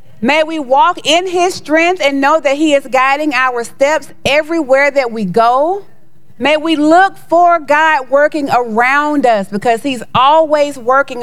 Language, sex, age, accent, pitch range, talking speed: English, female, 40-59, American, 220-290 Hz, 160 wpm